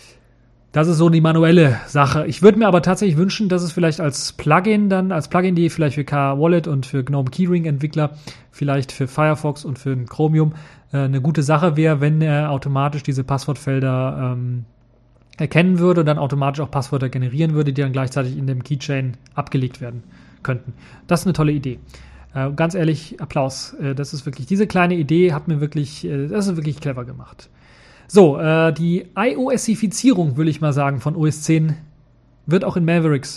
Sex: male